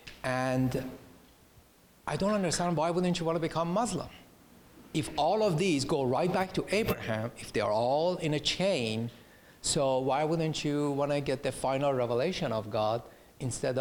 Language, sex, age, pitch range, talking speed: English, male, 50-69, 120-170 Hz, 175 wpm